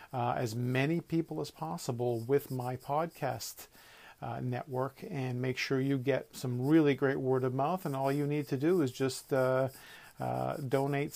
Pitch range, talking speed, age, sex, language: 125-150 Hz, 175 wpm, 50-69, male, English